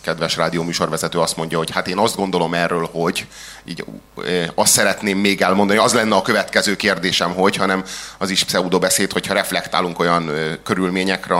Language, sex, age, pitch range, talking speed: Hungarian, male, 30-49, 90-120 Hz, 170 wpm